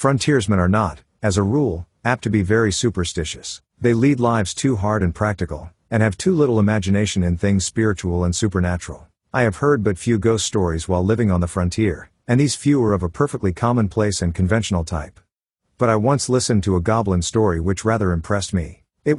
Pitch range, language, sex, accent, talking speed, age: 90-115 Hz, English, male, American, 200 wpm, 50-69